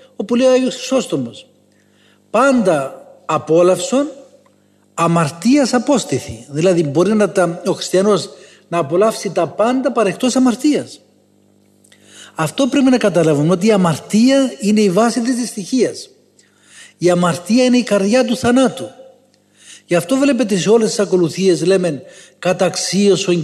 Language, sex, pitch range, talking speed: Greek, male, 160-220 Hz, 130 wpm